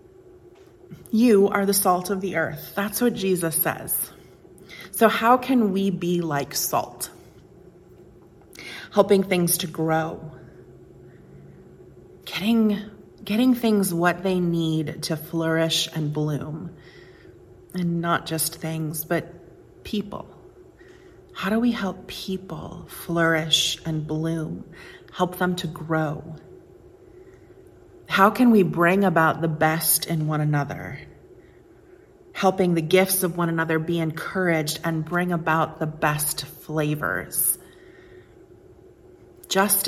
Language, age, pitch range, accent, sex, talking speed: English, 30-49, 160-200 Hz, American, female, 115 wpm